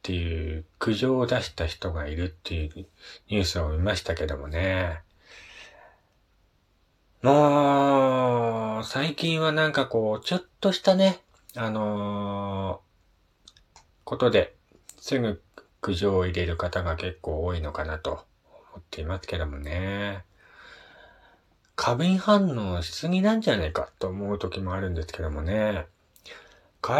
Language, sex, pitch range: Japanese, male, 90-125 Hz